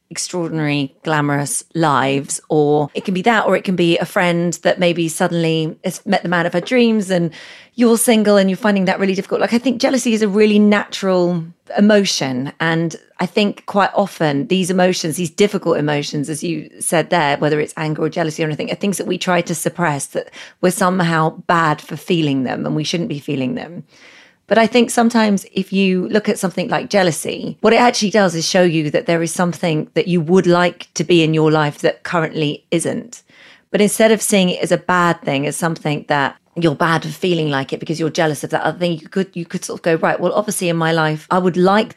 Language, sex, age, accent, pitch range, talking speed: English, female, 30-49, British, 160-195 Hz, 225 wpm